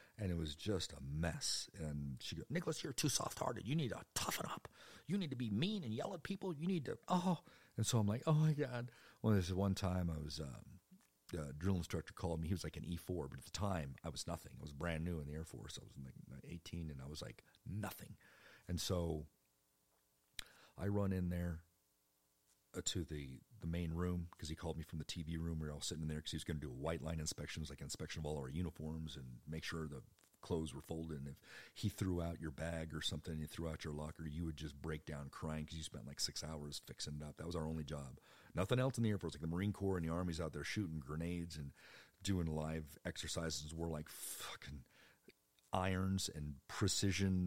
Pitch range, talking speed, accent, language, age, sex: 75-95 Hz, 240 wpm, American, English, 50-69, male